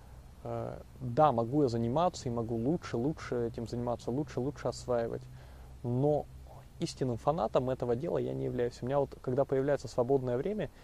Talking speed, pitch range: 155 wpm, 110-140 Hz